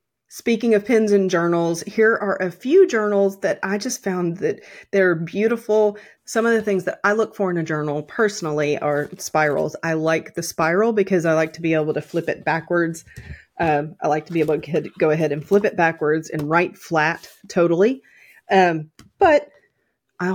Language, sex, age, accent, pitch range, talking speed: English, female, 30-49, American, 165-210 Hz, 190 wpm